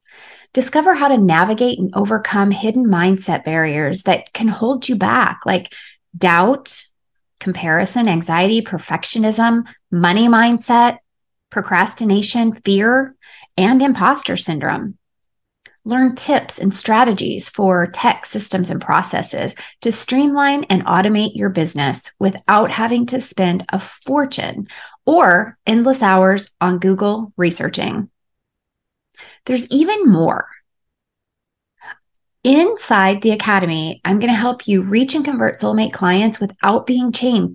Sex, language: female, English